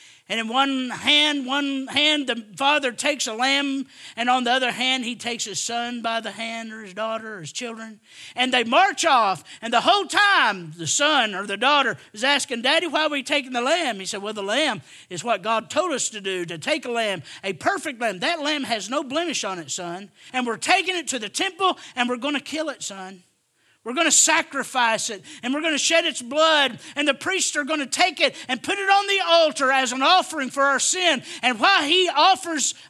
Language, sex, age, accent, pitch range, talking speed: English, male, 50-69, American, 230-310 Hz, 235 wpm